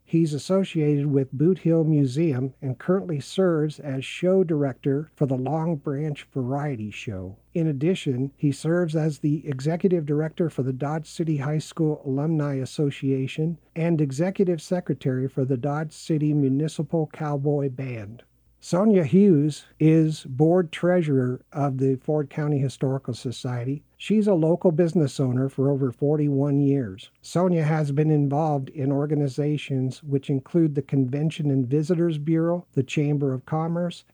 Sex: male